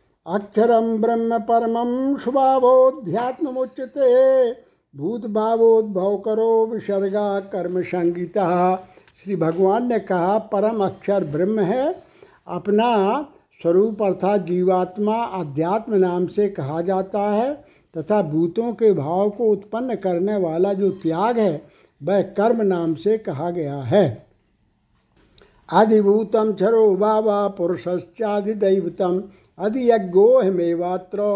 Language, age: Hindi, 60-79